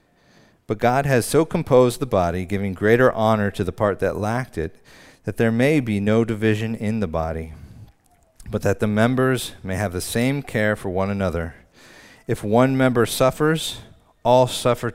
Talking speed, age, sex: 175 wpm, 40-59, male